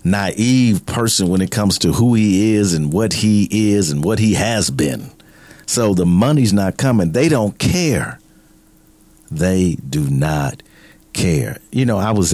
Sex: male